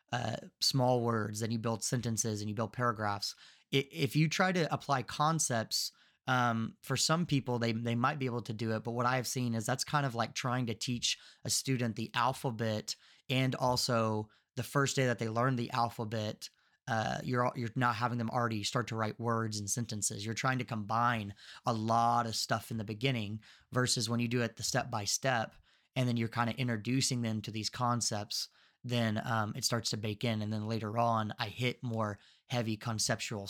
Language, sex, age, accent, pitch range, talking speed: English, male, 30-49, American, 110-125 Hz, 205 wpm